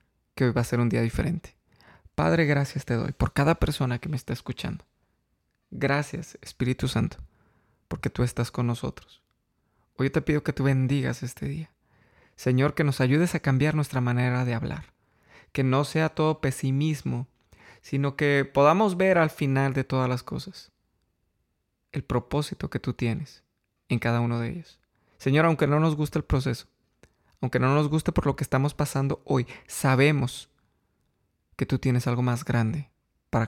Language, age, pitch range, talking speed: Spanish, 20-39, 120-145 Hz, 170 wpm